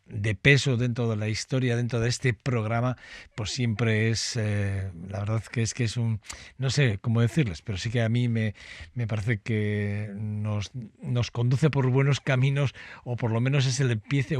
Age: 60-79